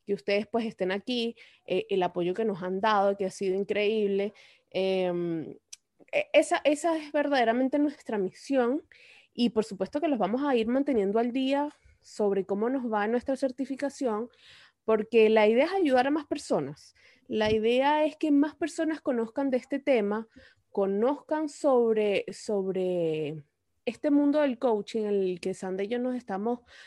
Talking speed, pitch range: 165 wpm, 205-280 Hz